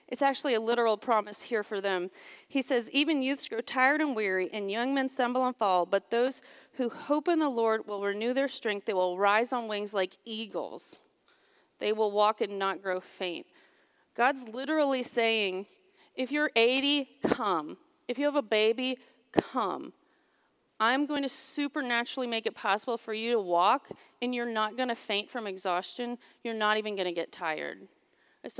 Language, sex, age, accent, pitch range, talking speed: English, female, 40-59, American, 215-275 Hz, 185 wpm